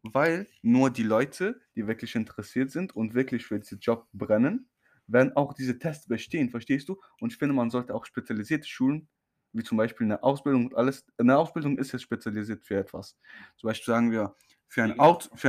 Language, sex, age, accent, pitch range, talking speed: English, male, 10-29, German, 115-145 Hz, 200 wpm